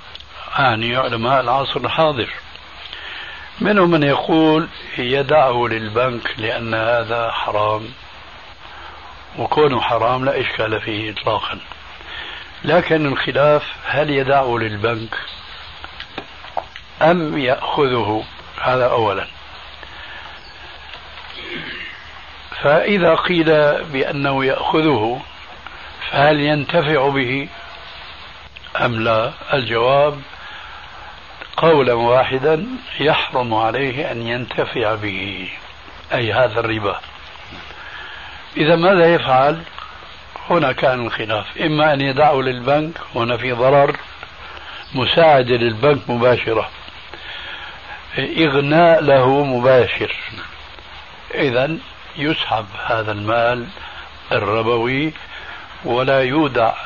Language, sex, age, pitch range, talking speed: Arabic, male, 60-79, 115-150 Hz, 75 wpm